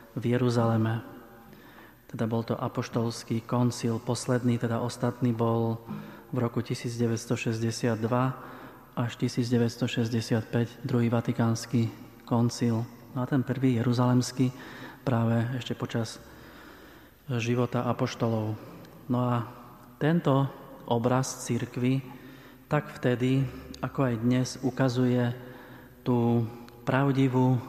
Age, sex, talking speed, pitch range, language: 30-49, male, 90 wpm, 120-130 Hz, Slovak